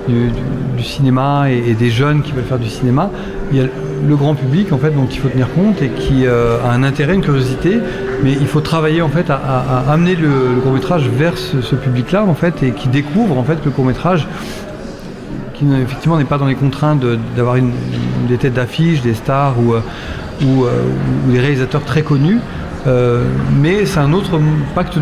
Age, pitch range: 40-59, 125-160 Hz